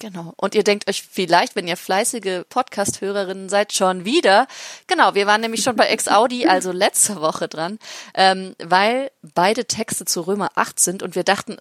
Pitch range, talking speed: 180-225 Hz, 180 wpm